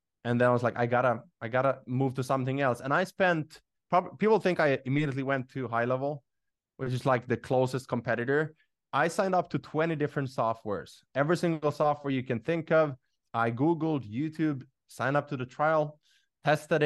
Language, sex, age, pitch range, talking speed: English, male, 20-39, 115-145 Hz, 190 wpm